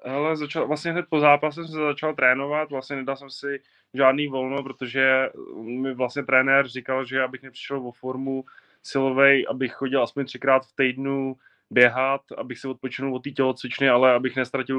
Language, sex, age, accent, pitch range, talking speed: Czech, male, 20-39, native, 120-135 Hz, 175 wpm